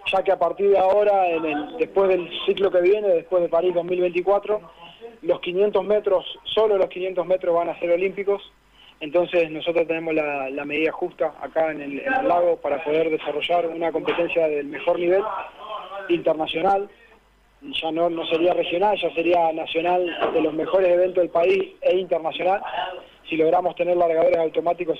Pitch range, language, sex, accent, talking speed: 160-190 Hz, Spanish, male, Argentinian, 165 wpm